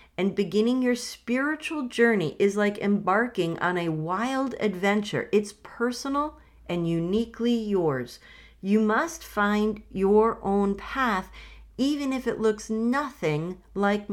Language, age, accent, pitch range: English, 40-59, American, 180-235 Hz